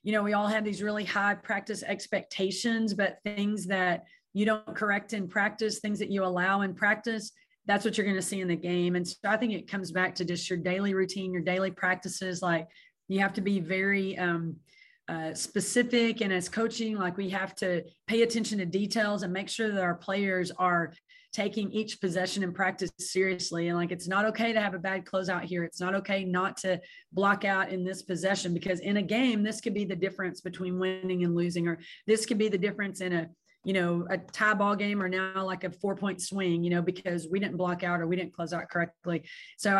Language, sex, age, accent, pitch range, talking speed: English, female, 30-49, American, 180-210 Hz, 225 wpm